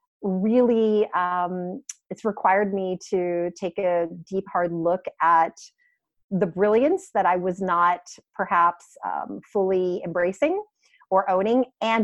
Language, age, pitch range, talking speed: English, 40-59, 165-205 Hz, 125 wpm